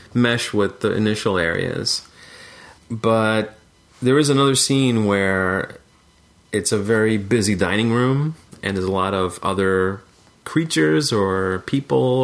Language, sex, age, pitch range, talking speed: English, male, 30-49, 100-125 Hz, 125 wpm